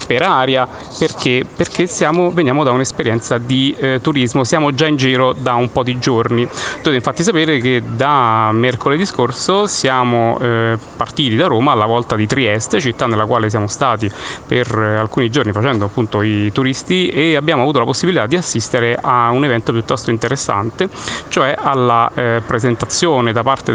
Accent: native